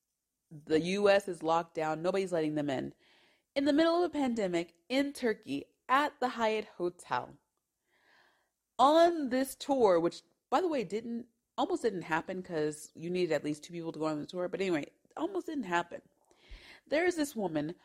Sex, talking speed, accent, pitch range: female, 180 wpm, American, 155-245 Hz